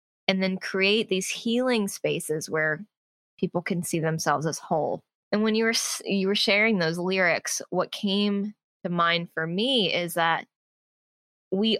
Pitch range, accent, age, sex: 175-220 Hz, American, 20-39, female